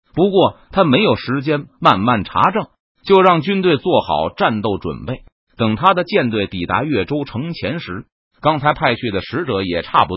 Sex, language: male, Chinese